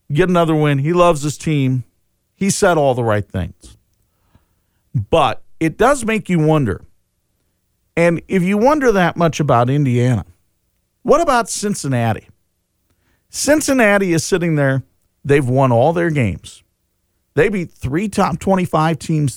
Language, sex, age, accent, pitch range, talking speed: English, male, 50-69, American, 100-160 Hz, 140 wpm